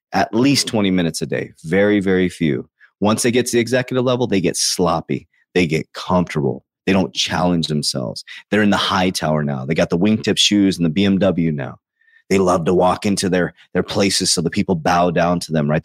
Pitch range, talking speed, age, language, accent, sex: 85-105 Hz, 215 wpm, 30-49, English, American, male